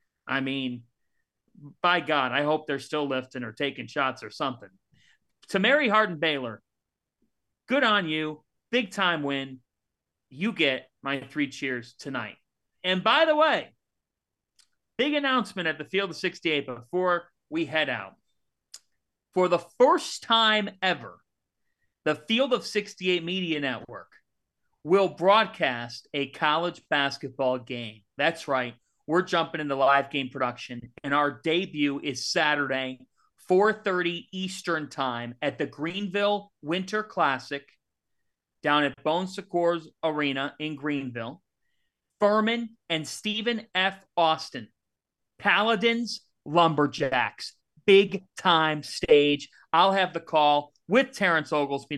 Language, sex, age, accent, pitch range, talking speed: English, male, 40-59, American, 140-195 Hz, 120 wpm